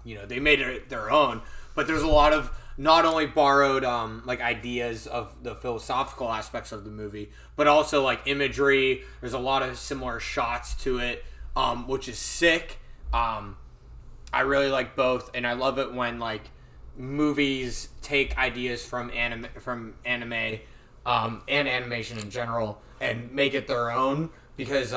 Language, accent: English, American